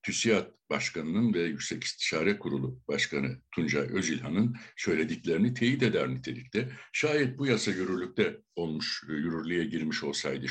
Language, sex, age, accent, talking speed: Turkish, male, 60-79, native, 120 wpm